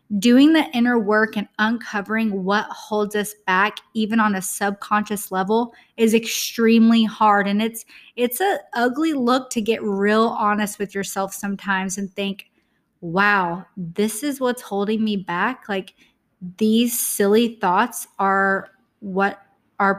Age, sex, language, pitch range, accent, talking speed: 20-39, female, English, 200-240 Hz, American, 140 wpm